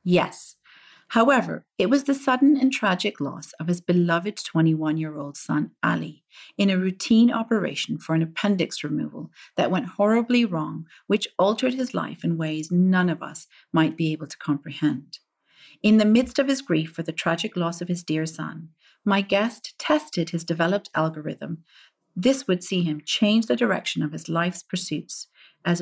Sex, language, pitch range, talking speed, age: female, English, 165-230 Hz, 170 wpm, 40-59